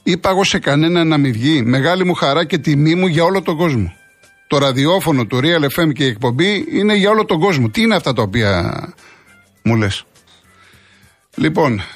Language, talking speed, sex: Greek, 185 wpm, male